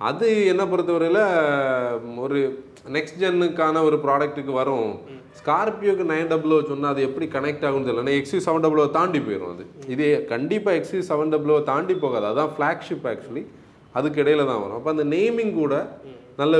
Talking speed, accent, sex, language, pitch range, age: 155 wpm, native, male, Tamil, 135-165 Hz, 30-49